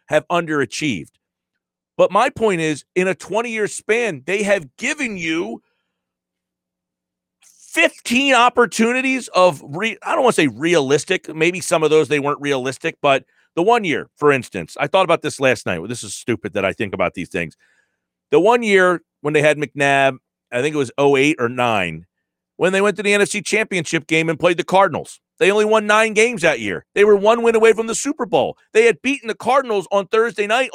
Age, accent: 40-59, American